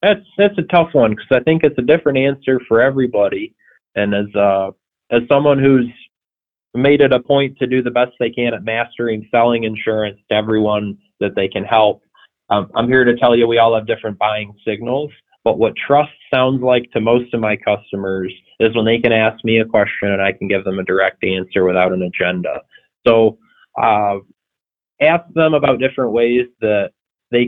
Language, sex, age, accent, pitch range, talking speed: English, male, 20-39, American, 105-135 Hz, 195 wpm